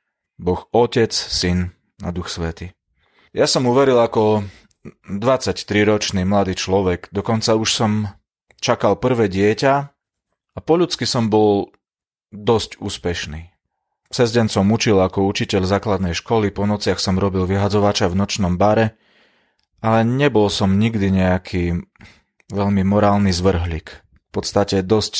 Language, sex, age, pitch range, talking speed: Slovak, male, 30-49, 90-110 Hz, 125 wpm